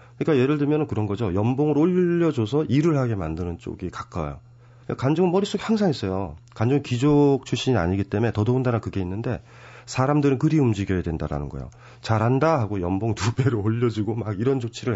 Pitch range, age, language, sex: 100-130 Hz, 40-59, Korean, male